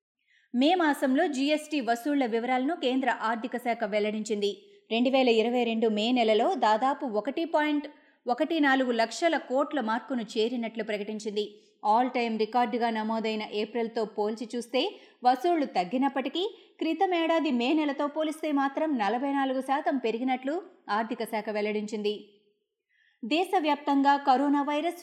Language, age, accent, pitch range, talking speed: Telugu, 20-39, native, 225-290 Hz, 110 wpm